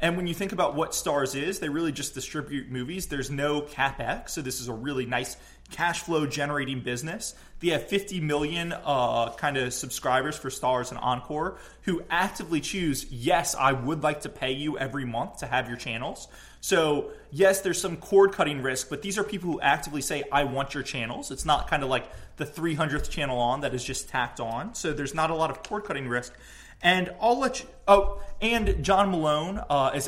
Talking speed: 205 wpm